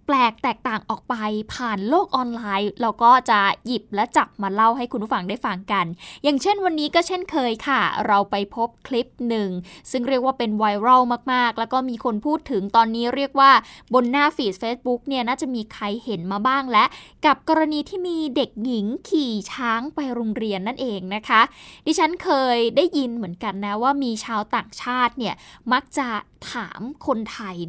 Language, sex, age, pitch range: Thai, female, 10-29, 215-270 Hz